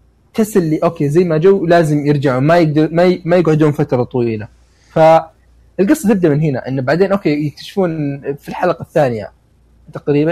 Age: 20-39